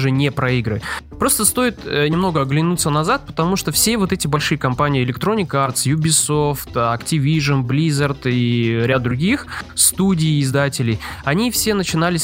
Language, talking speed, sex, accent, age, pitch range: Russian, 135 wpm, male, native, 20-39, 130-170 Hz